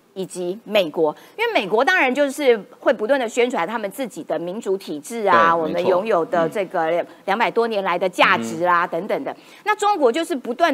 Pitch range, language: 190-290 Hz, Chinese